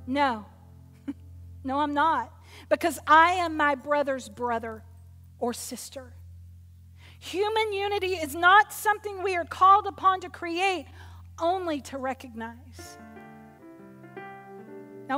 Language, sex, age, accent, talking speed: English, female, 40-59, American, 105 wpm